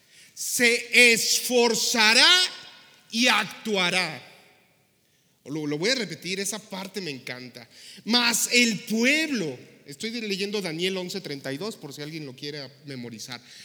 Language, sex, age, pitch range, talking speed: Spanish, male, 40-59, 175-250 Hz, 115 wpm